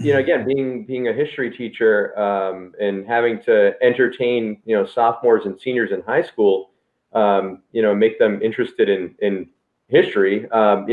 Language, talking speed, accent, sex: English, 175 wpm, American, male